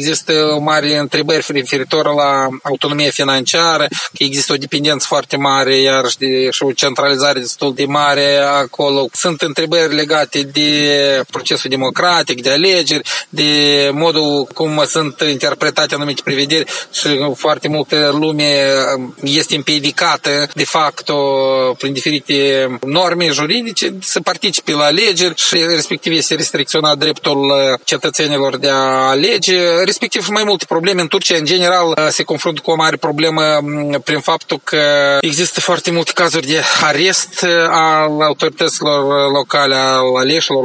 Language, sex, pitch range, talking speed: Romanian, male, 135-155 Hz, 135 wpm